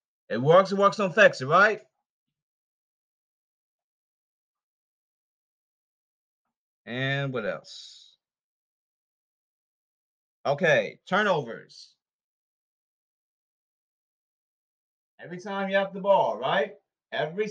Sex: male